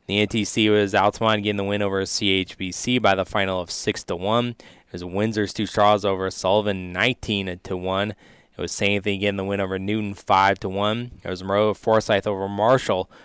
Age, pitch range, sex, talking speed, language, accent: 20-39, 95-105 Hz, male, 200 wpm, English, American